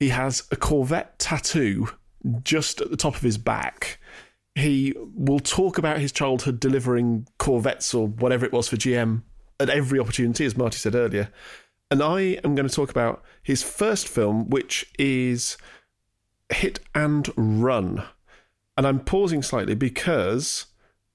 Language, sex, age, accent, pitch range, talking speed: English, male, 40-59, British, 115-145 Hz, 150 wpm